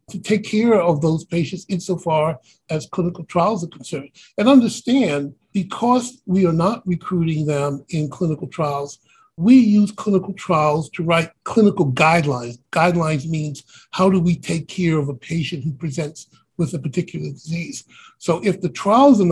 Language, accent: English, American